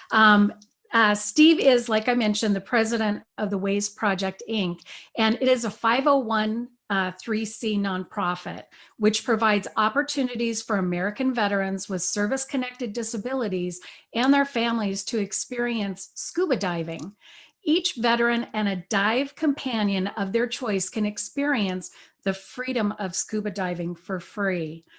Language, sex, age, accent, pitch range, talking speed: English, female, 40-59, American, 200-250 Hz, 135 wpm